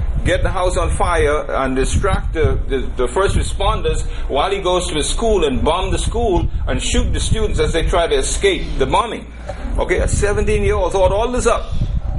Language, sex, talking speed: English, male, 195 wpm